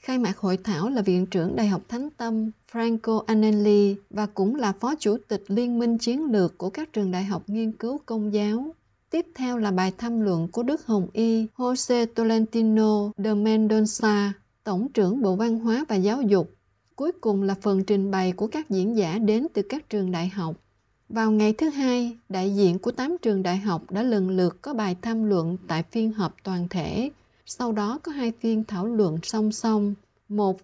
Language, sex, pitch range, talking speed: Vietnamese, female, 190-235 Hz, 200 wpm